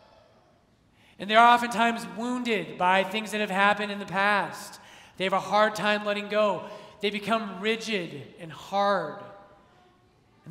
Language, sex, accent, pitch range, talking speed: English, male, American, 195-230 Hz, 145 wpm